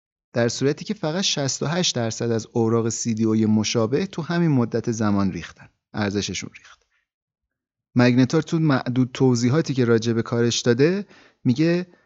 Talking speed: 135 wpm